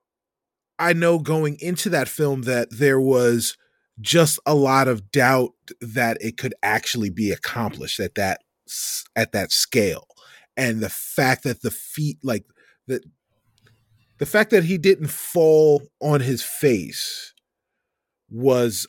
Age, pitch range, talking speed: 30-49, 125-165 Hz, 135 wpm